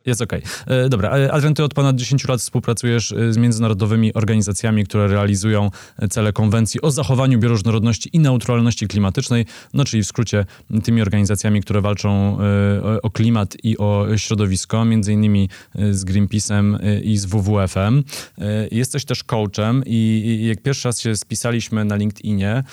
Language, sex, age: Polish, male, 20-39